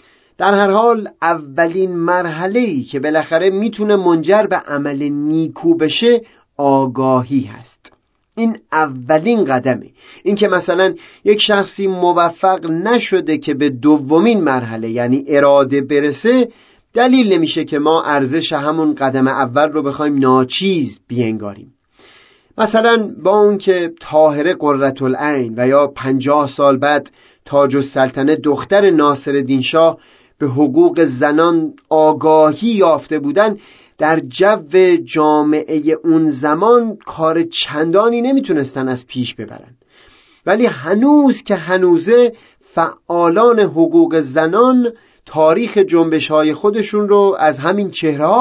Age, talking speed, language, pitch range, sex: 30-49, 115 wpm, Persian, 145-195 Hz, male